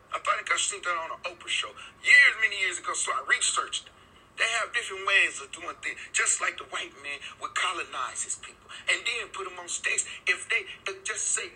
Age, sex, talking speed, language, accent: 40-59, male, 225 wpm, English, American